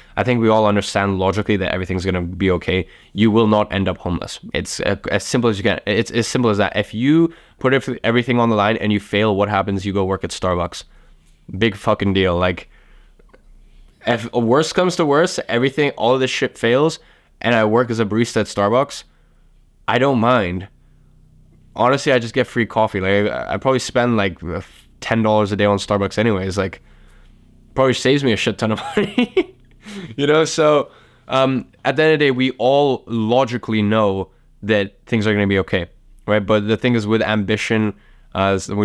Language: English